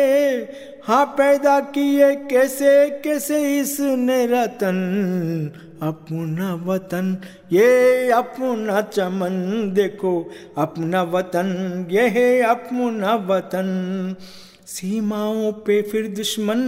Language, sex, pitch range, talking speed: Hindi, male, 200-280 Hz, 85 wpm